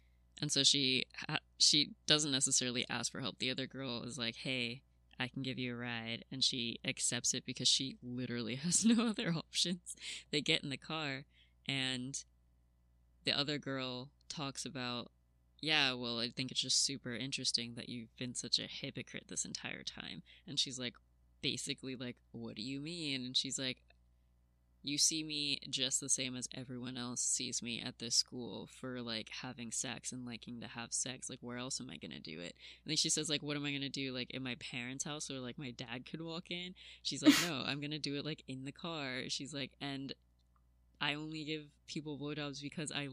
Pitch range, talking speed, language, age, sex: 120-140 Hz, 210 wpm, English, 20-39, female